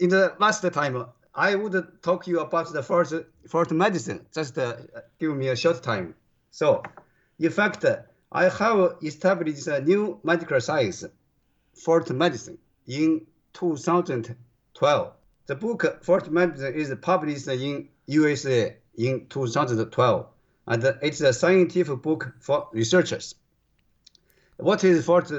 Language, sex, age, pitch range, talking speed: English, male, 50-69, 130-175 Hz, 130 wpm